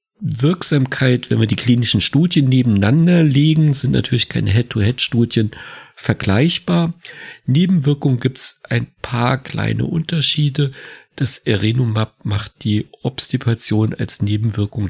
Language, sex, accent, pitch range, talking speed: German, male, German, 110-140 Hz, 110 wpm